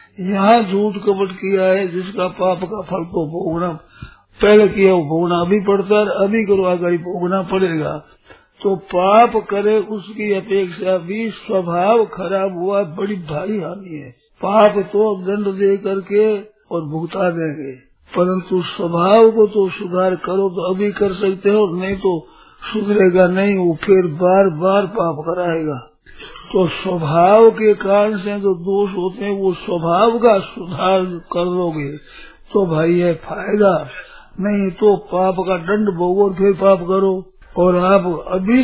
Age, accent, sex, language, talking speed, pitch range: 50-69, native, male, Hindi, 150 wpm, 175-200 Hz